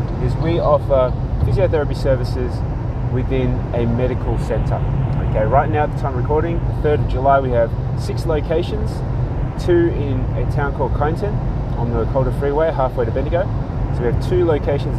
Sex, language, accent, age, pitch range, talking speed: male, English, Australian, 20-39, 120-135 Hz, 170 wpm